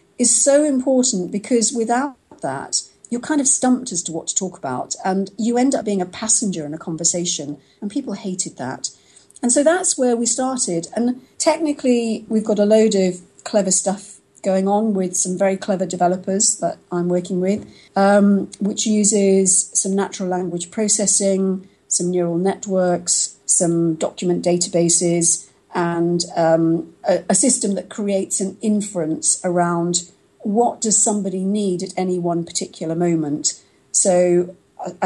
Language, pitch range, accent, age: English, 175-210 Hz, British, 40-59